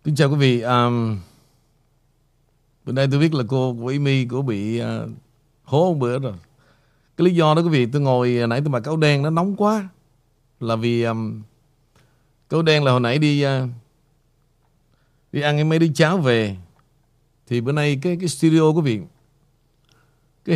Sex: male